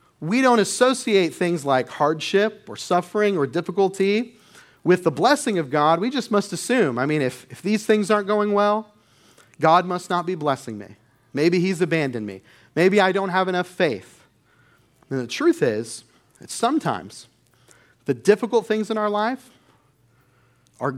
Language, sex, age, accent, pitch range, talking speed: English, male, 40-59, American, 140-200 Hz, 165 wpm